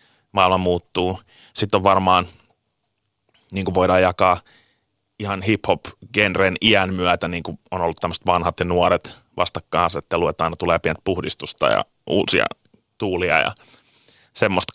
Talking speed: 130 wpm